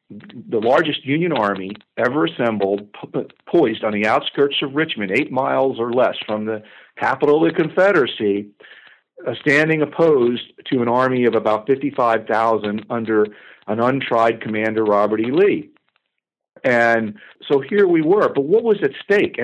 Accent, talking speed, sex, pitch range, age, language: American, 150 wpm, male, 110-150 Hz, 50-69, English